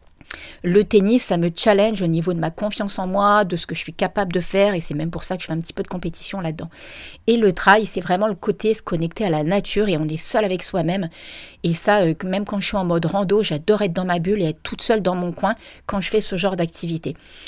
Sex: female